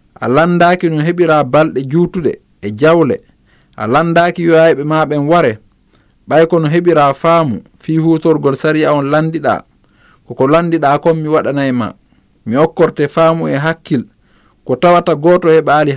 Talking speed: 140 wpm